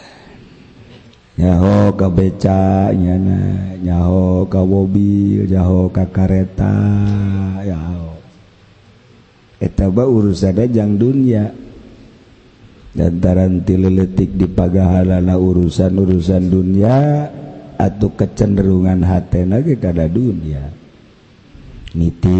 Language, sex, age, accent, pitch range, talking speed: Indonesian, male, 50-69, native, 95-120 Hz, 80 wpm